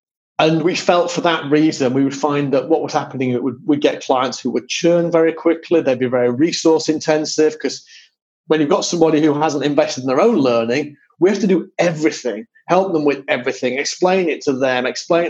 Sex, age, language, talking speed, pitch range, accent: male, 30-49, English, 210 wpm, 130-170 Hz, British